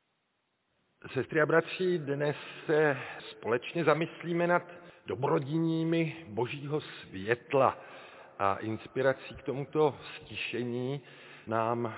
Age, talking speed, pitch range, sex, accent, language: 40-59, 85 wpm, 115-145 Hz, male, native, Czech